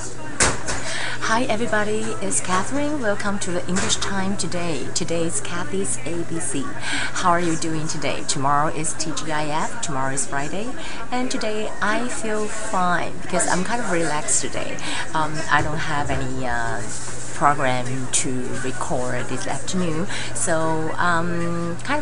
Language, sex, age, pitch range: Chinese, female, 30-49, 145-195 Hz